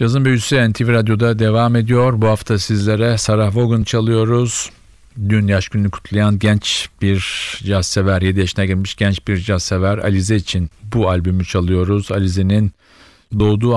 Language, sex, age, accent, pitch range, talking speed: Turkish, male, 50-69, native, 90-110 Hz, 145 wpm